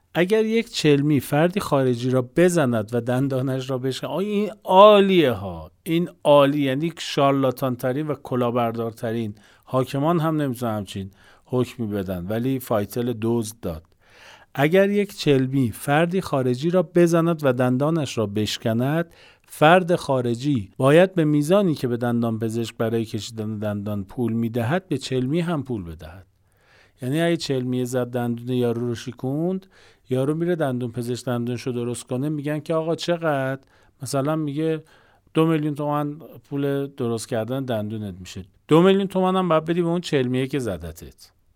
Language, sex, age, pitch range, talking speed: Persian, male, 50-69, 115-155 Hz, 140 wpm